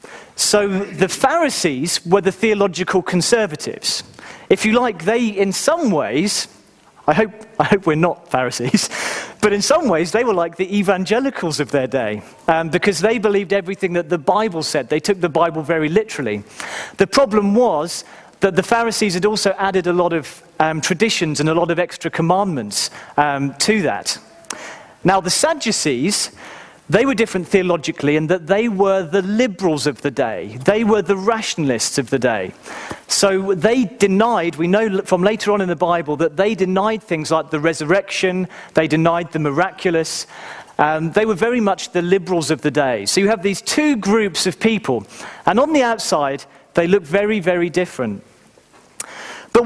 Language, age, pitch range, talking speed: English, 40-59, 165-215 Hz, 175 wpm